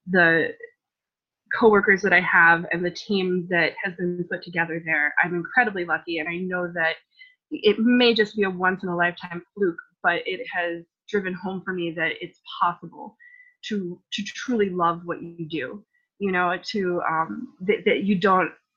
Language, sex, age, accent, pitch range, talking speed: English, female, 20-39, American, 170-200 Hz, 170 wpm